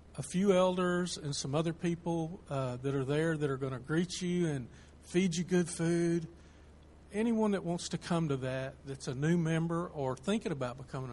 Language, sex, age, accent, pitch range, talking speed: English, male, 50-69, American, 130-170 Hz, 200 wpm